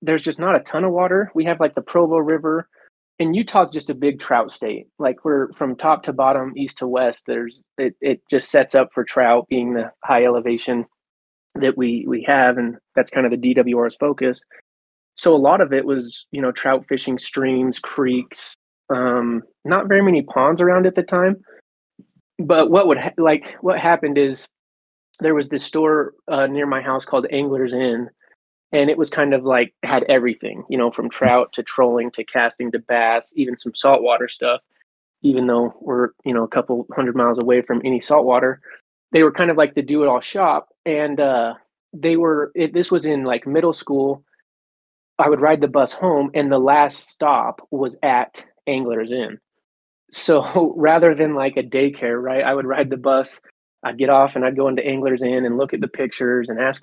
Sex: male